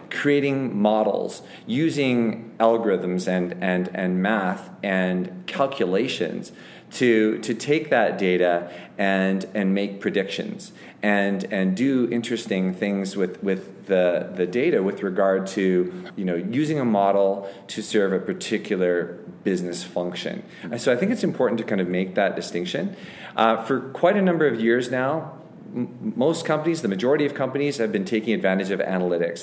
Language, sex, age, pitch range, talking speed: English, male, 40-59, 95-130 Hz, 150 wpm